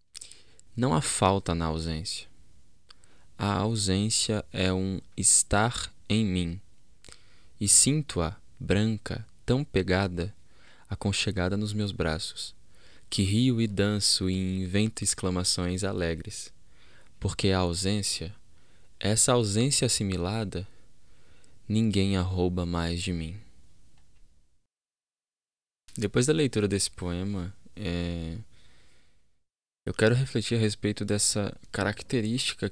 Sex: male